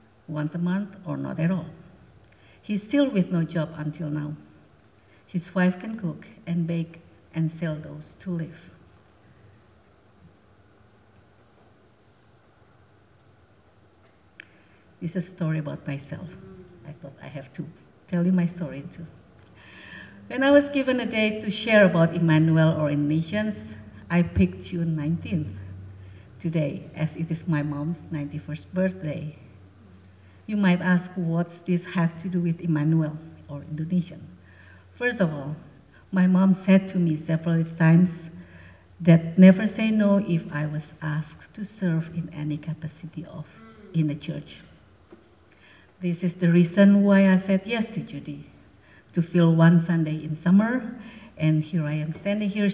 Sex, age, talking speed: female, 50-69, 145 wpm